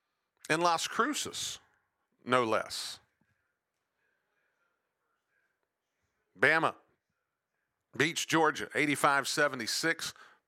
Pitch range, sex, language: 135-165 Hz, male, English